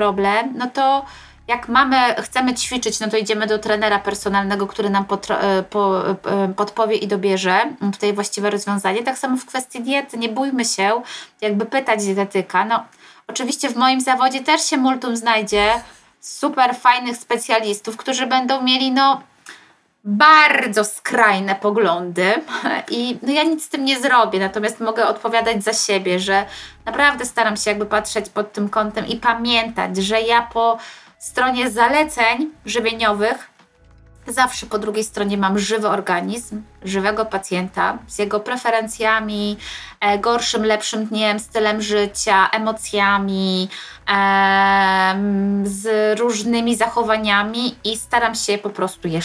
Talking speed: 130 wpm